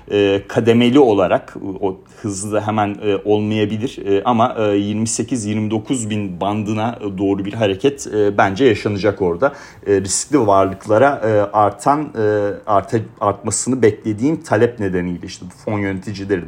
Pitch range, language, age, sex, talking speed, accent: 100-135 Hz, Turkish, 40-59, male, 100 wpm, native